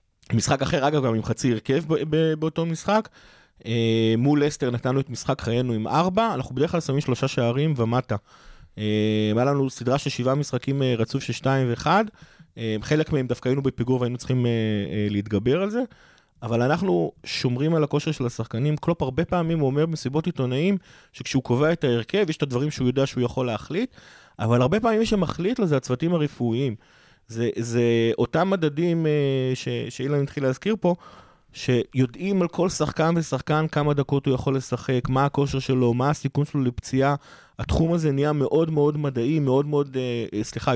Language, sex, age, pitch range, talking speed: Hebrew, male, 20-39, 120-155 Hz, 175 wpm